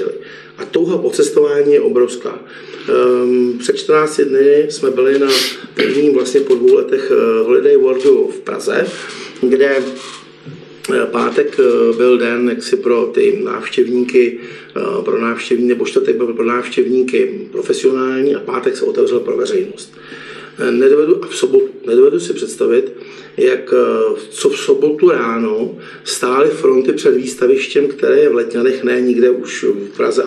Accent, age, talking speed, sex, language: native, 50-69, 125 wpm, male, Czech